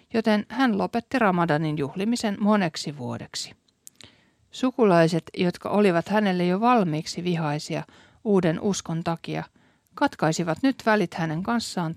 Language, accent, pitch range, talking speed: Finnish, native, 160-210 Hz, 110 wpm